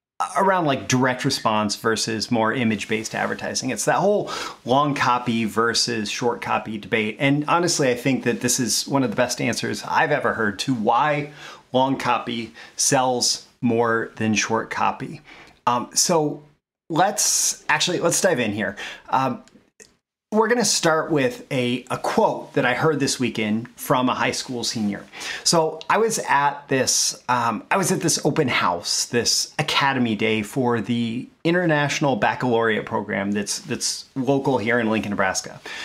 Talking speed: 160 wpm